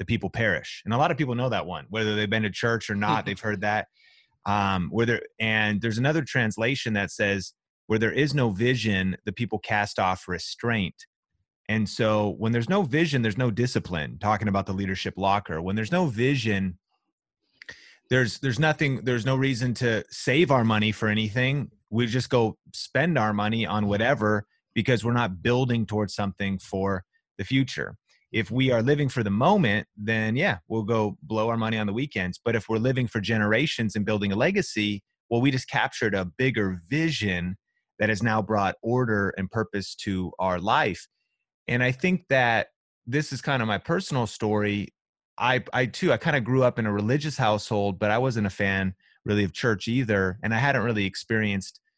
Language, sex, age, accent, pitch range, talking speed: English, male, 30-49, American, 100-125 Hz, 195 wpm